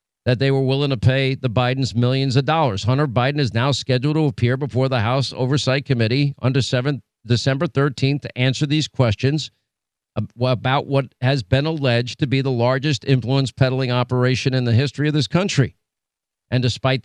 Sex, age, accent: male, 50-69, American